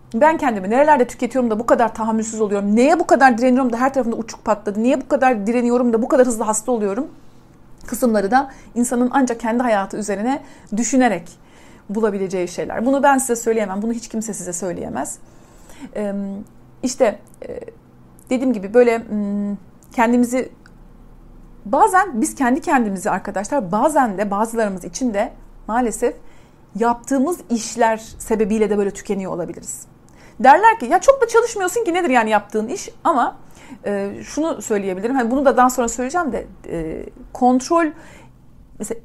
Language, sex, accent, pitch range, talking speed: Turkish, female, native, 205-275 Hz, 145 wpm